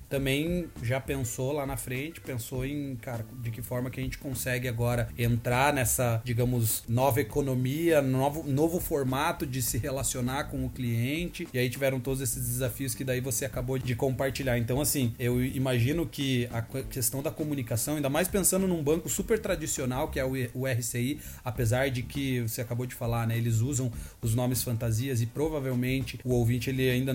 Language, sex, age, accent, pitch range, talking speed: Portuguese, male, 30-49, Brazilian, 125-145 Hz, 180 wpm